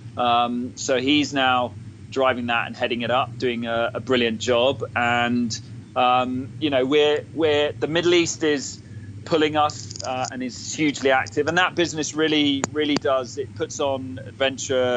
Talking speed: 170 wpm